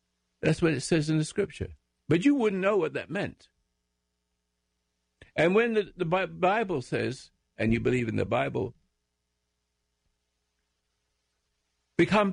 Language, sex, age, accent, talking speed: English, male, 60-79, American, 130 wpm